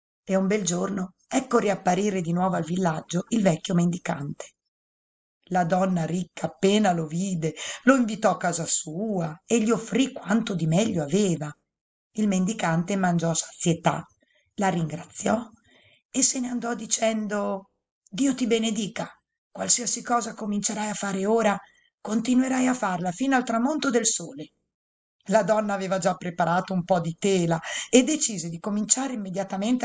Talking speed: 145 wpm